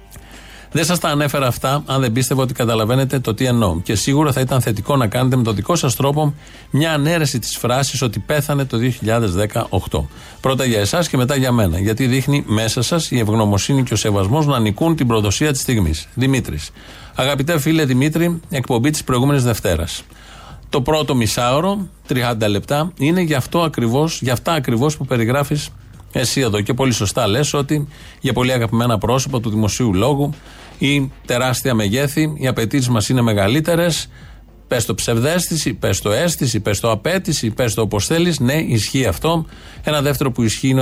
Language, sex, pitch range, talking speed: Greek, male, 110-145 Hz, 175 wpm